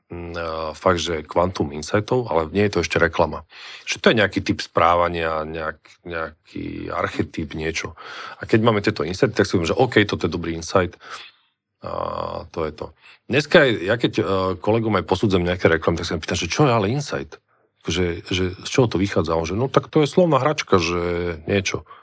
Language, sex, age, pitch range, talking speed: Slovak, male, 40-59, 85-105 Hz, 200 wpm